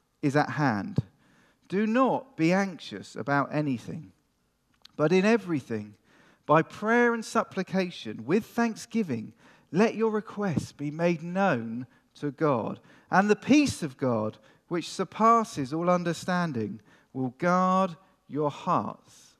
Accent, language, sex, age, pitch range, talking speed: British, English, male, 40-59, 130-185 Hz, 120 wpm